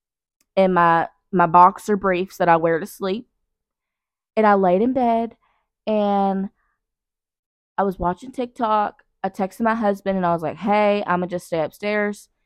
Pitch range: 170-220 Hz